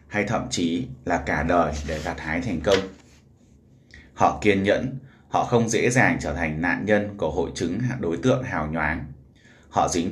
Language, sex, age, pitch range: Vietnamese, male, 20-39, 85-115 Hz